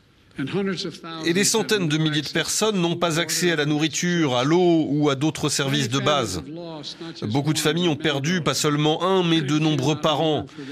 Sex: male